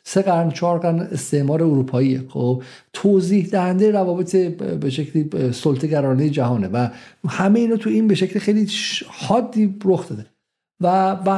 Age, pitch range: 50-69, 165-210 Hz